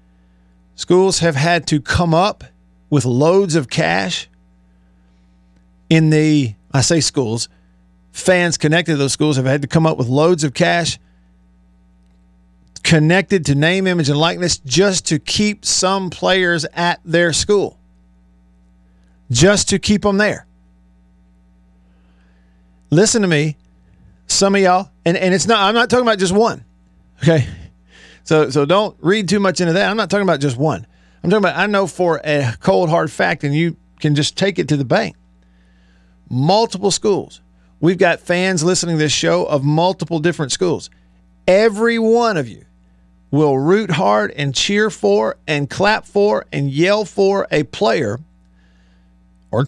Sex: male